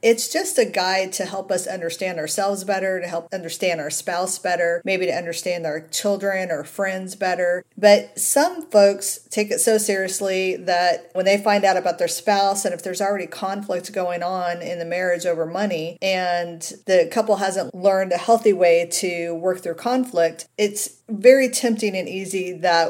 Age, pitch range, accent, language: 40-59, 170-200 Hz, American, English